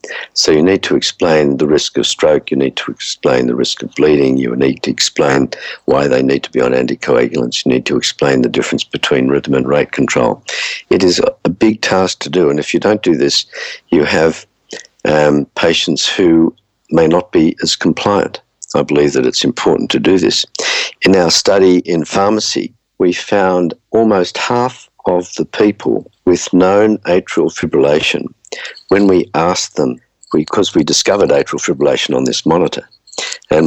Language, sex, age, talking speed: English, male, 60-79, 175 wpm